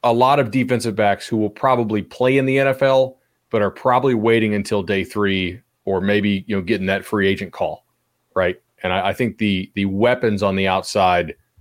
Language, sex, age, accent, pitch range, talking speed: English, male, 30-49, American, 95-120 Hz, 200 wpm